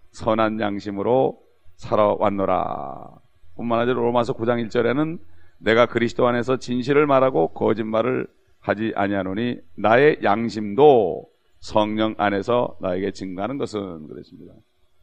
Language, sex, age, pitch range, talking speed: English, male, 40-59, 100-145 Hz, 95 wpm